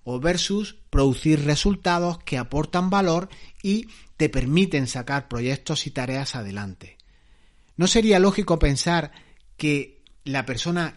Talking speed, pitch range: 120 wpm, 130-175 Hz